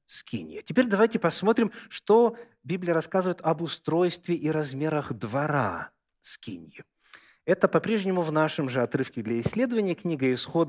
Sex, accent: male, native